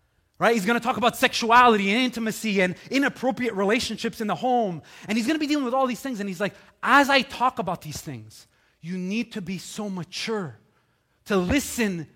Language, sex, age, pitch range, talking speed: English, male, 30-49, 180-245 Hz, 200 wpm